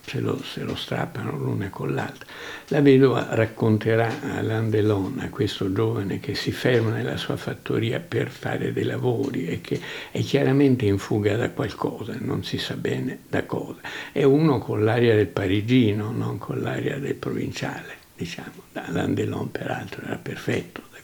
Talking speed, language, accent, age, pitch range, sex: 160 wpm, Italian, native, 60-79, 105-135 Hz, male